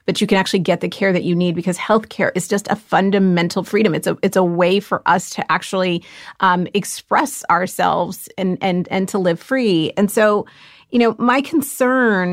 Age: 30-49